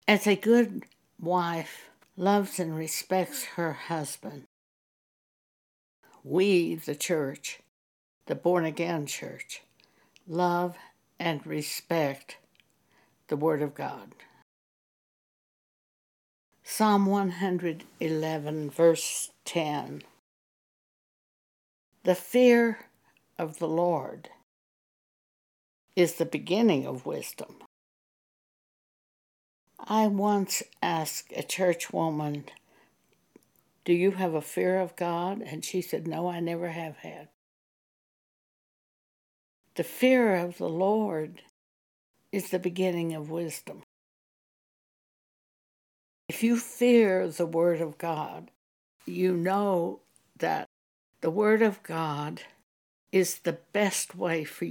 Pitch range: 155-185 Hz